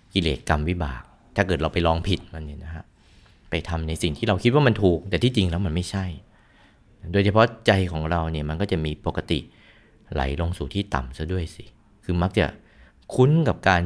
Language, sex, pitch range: Thai, male, 80-100 Hz